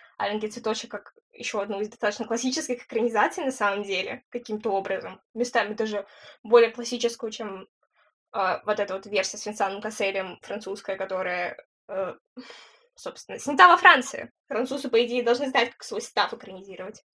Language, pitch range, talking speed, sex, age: Russian, 210-275 Hz, 150 wpm, female, 10-29